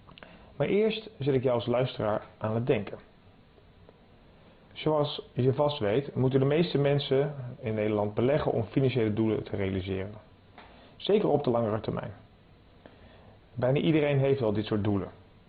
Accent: Dutch